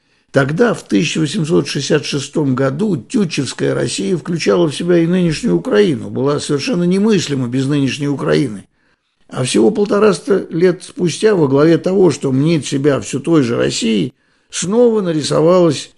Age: 60-79